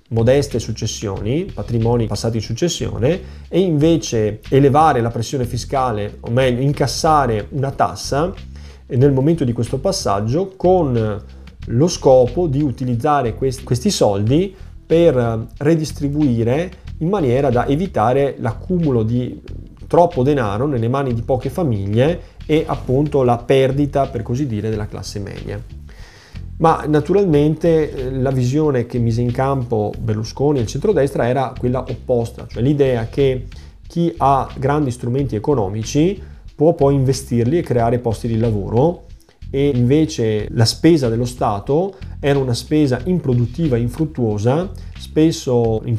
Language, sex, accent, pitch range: Italian, male, native, 110-145 Hz